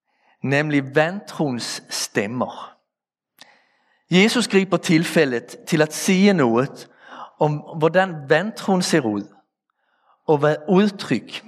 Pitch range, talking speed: 140-190 Hz, 95 wpm